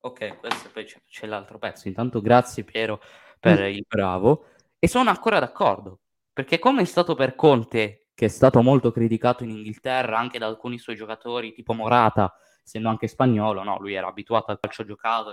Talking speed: 185 wpm